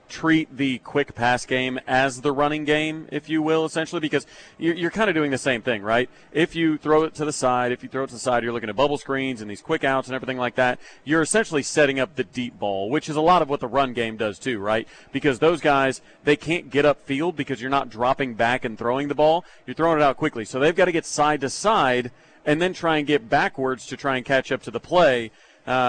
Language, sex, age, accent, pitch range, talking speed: English, male, 40-59, American, 125-150 Hz, 260 wpm